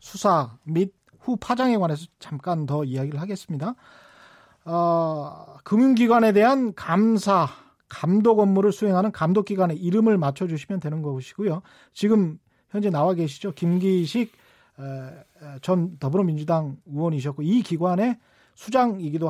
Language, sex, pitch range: Korean, male, 160-215 Hz